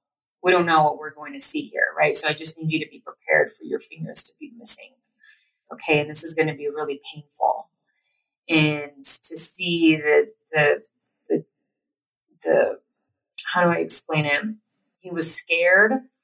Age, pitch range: 30-49, 150-205 Hz